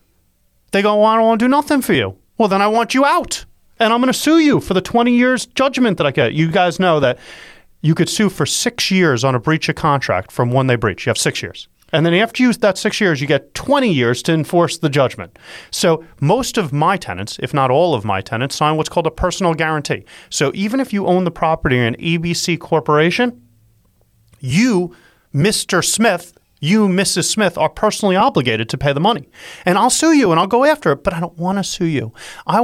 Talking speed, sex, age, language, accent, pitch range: 230 wpm, male, 30-49, English, American, 155-210 Hz